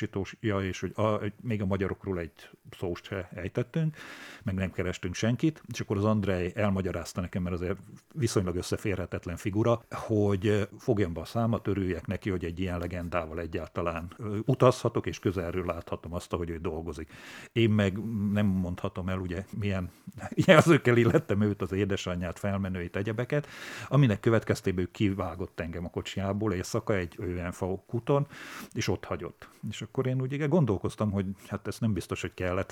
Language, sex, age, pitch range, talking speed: Hungarian, male, 50-69, 90-115 Hz, 155 wpm